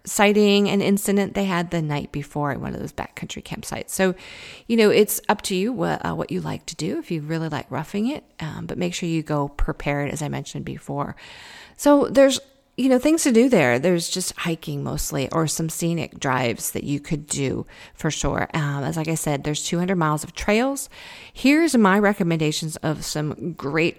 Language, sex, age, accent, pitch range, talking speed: English, female, 40-59, American, 155-200 Hz, 210 wpm